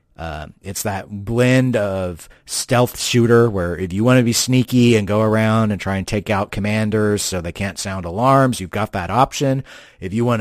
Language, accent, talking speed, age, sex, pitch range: English, American, 200 wpm, 40-59, male, 95-120 Hz